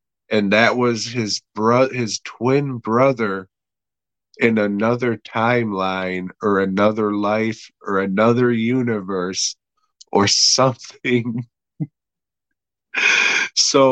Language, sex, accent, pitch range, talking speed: English, male, American, 105-140 Hz, 85 wpm